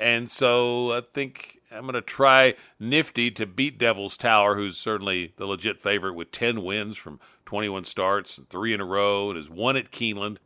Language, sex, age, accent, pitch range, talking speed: English, male, 50-69, American, 105-130 Hz, 195 wpm